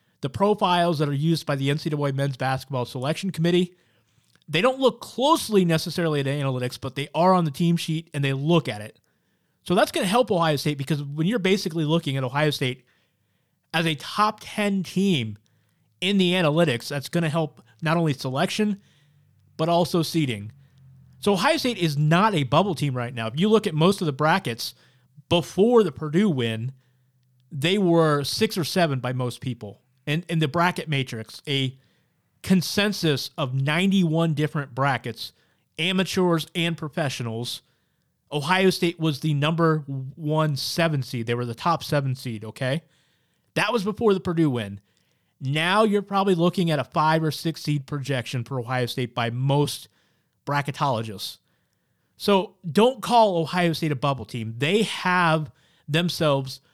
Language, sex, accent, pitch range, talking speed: English, male, American, 130-175 Hz, 165 wpm